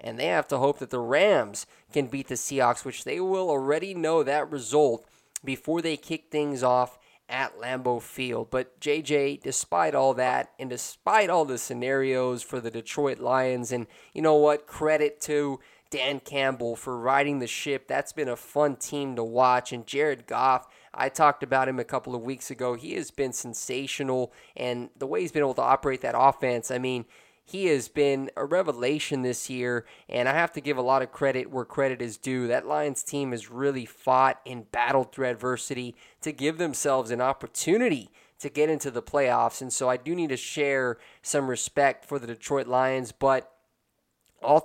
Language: English